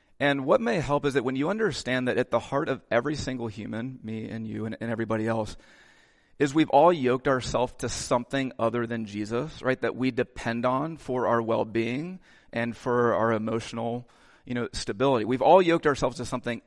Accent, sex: American, male